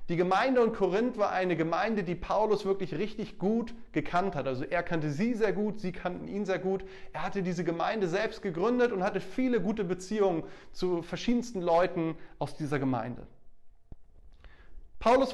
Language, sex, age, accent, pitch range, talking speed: German, male, 30-49, German, 175-215 Hz, 170 wpm